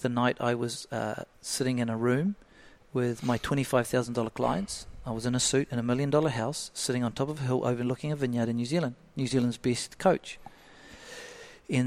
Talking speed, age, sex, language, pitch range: 200 wpm, 40-59, male, English, 120-135 Hz